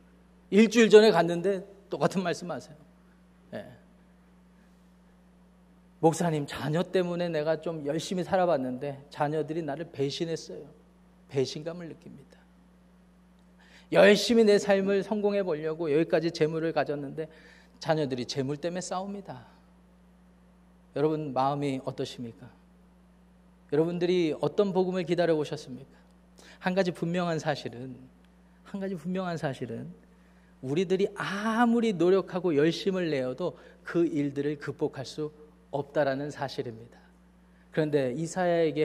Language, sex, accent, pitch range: Korean, male, native, 145-195 Hz